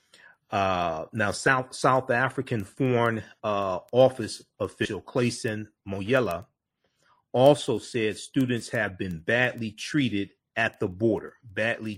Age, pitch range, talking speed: 40-59, 105-125 Hz, 110 wpm